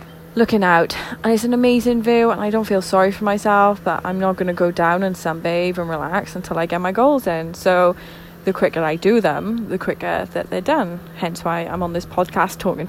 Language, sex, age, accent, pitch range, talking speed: English, female, 20-39, British, 170-205 Hz, 230 wpm